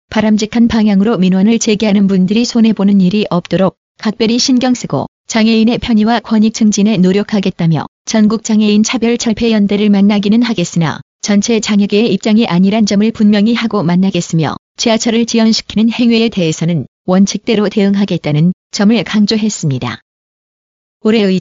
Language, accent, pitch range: Korean, native, 195-225 Hz